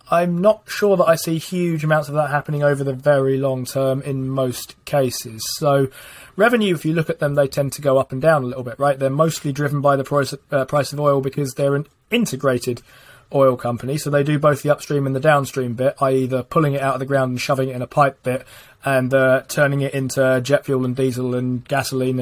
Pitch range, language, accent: 130-155 Hz, English, British